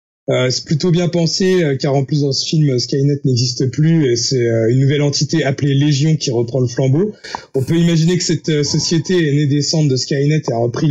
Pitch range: 135-160 Hz